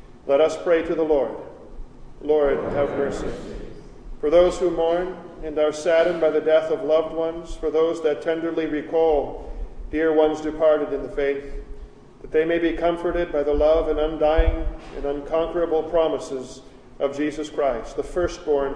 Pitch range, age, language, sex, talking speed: 150-170 Hz, 40-59, English, male, 165 wpm